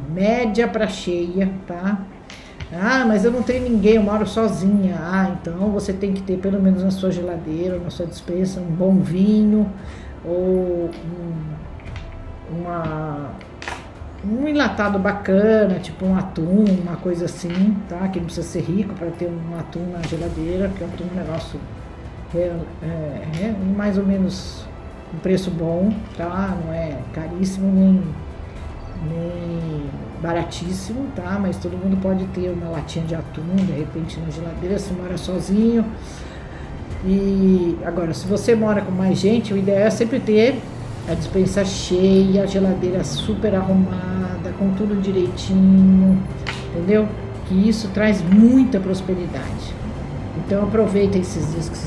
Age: 50-69